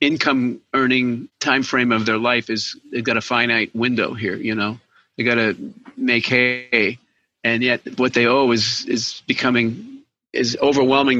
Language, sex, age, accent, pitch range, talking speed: English, male, 50-69, American, 115-135 Hz, 165 wpm